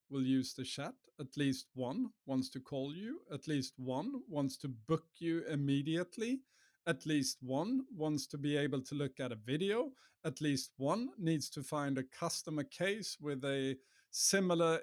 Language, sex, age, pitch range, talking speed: English, male, 50-69, 125-160 Hz, 175 wpm